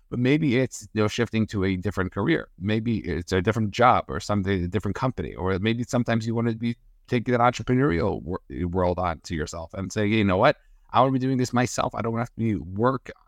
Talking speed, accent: 245 wpm, American